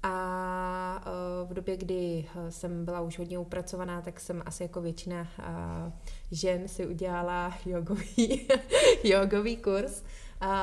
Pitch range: 170-190 Hz